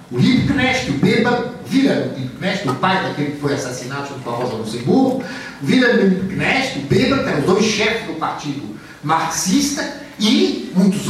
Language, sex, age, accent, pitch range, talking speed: French, male, 60-79, Brazilian, 165-225 Hz, 140 wpm